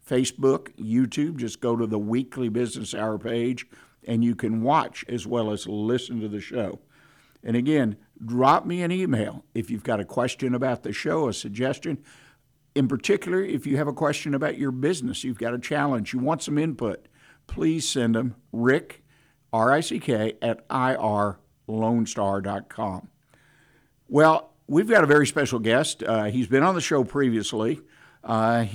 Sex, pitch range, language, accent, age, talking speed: male, 115-140 Hz, English, American, 50-69, 160 wpm